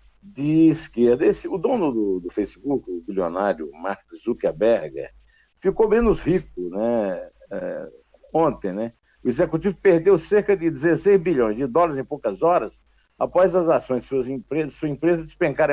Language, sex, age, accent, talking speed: Portuguese, male, 60-79, Brazilian, 150 wpm